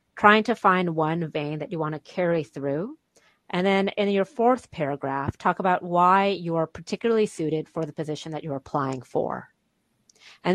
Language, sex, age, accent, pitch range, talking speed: English, female, 30-49, American, 155-190 Hz, 175 wpm